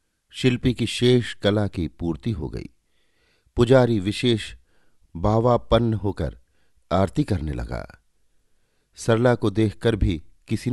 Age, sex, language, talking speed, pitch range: 50-69, male, Hindi, 110 wpm, 85-115 Hz